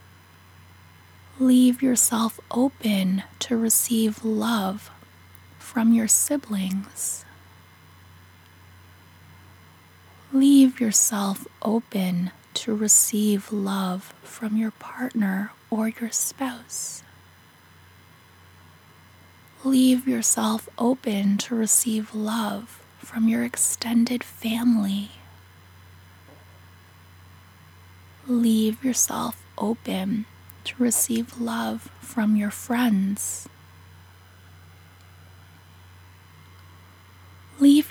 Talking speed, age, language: 65 wpm, 20-39, English